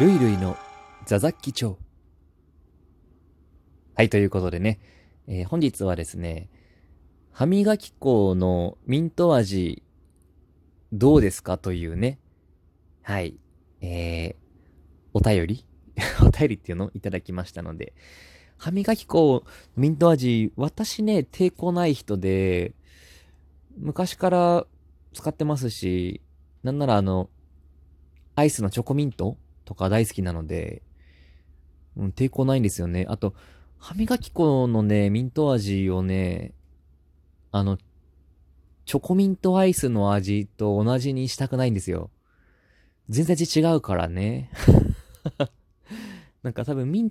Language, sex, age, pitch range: Japanese, male, 20-39, 85-130 Hz